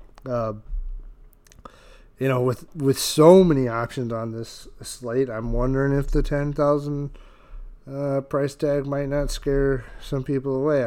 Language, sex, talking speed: English, male, 140 wpm